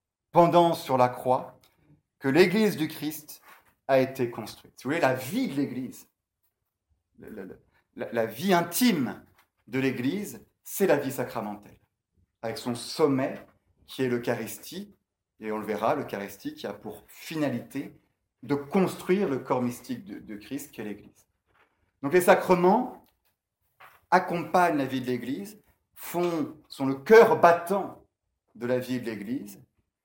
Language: French